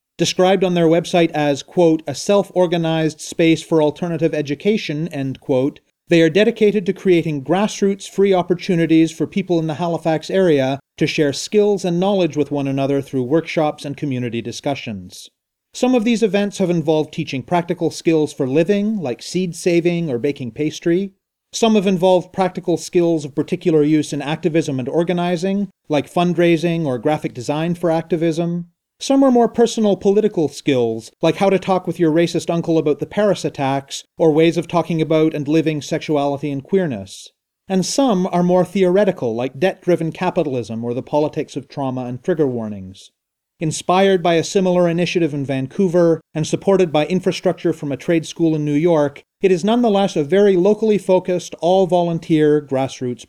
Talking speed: 165 wpm